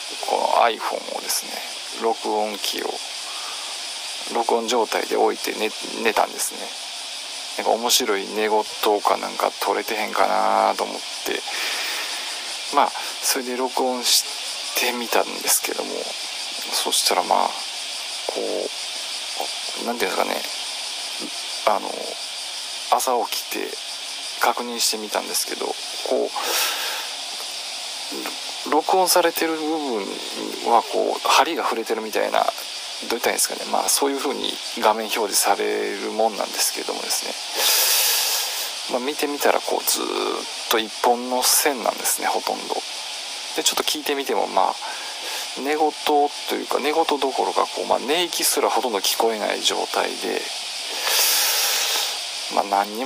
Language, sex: Japanese, male